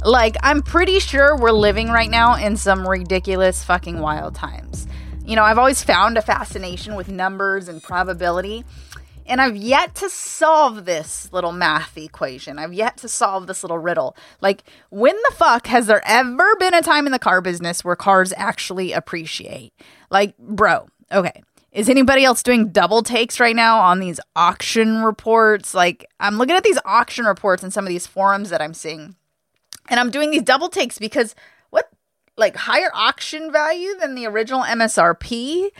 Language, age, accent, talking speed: English, 20-39, American, 175 wpm